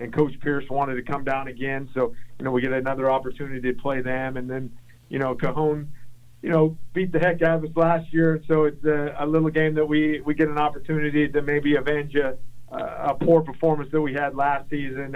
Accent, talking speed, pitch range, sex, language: American, 220 wpm, 130-150 Hz, male, English